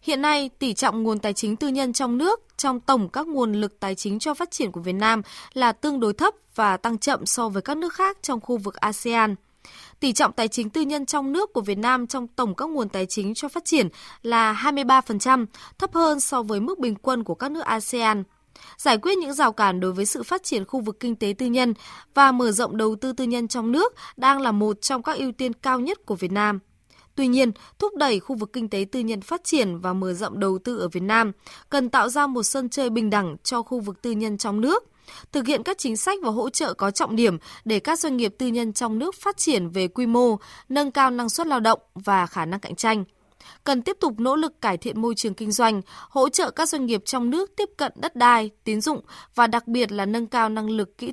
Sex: female